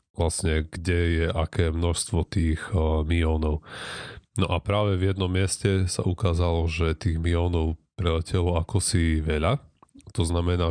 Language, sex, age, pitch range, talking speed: Slovak, male, 30-49, 80-95 Hz, 135 wpm